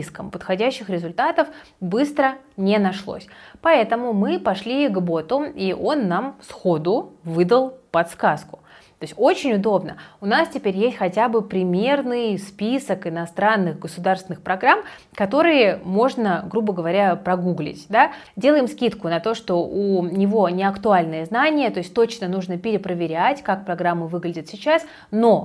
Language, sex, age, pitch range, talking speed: Russian, female, 20-39, 180-240 Hz, 135 wpm